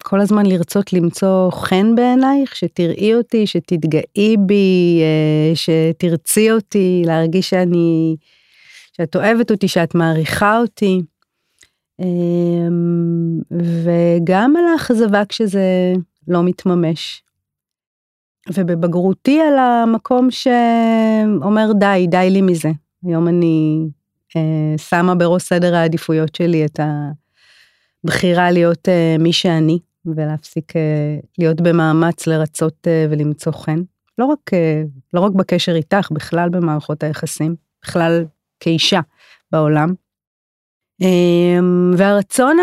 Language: Hebrew